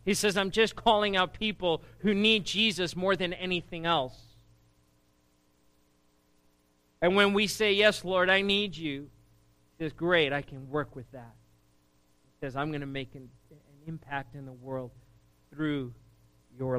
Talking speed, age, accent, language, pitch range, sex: 160 wpm, 40-59, American, English, 125-175 Hz, male